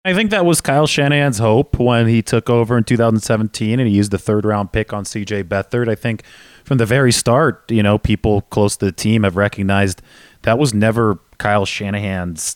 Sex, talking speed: male, 205 wpm